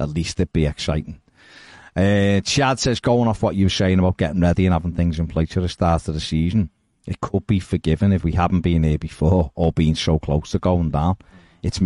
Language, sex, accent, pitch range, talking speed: English, male, British, 85-110 Hz, 240 wpm